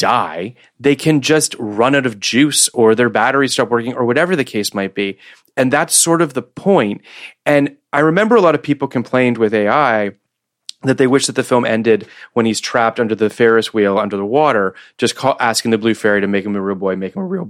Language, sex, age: English, male, 30-49